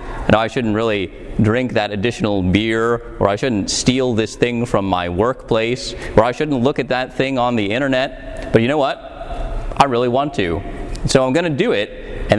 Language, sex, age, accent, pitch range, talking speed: English, male, 30-49, American, 110-140 Hz, 205 wpm